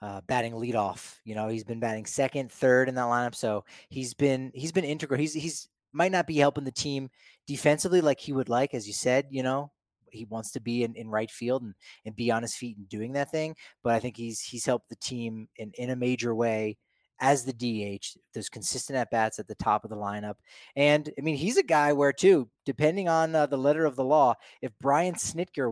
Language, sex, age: English, male, 30-49